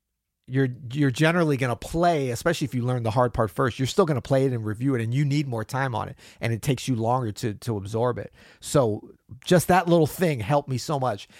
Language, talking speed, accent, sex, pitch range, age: English, 255 wpm, American, male, 115-145 Hz, 40-59